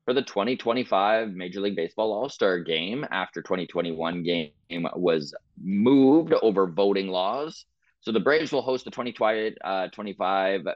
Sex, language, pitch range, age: male, English, 85-105 Hz, 30-49